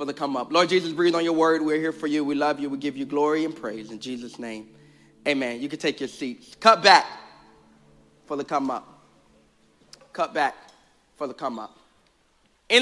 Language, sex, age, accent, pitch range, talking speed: English, male, 30-49, American, 140-185 Hz, 210 wpm